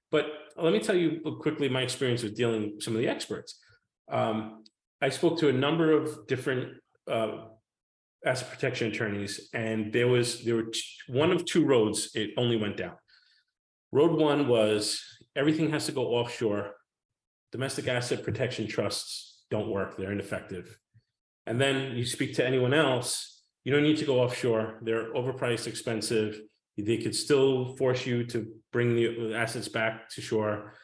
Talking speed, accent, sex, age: 165 wpm, American, male, 40-59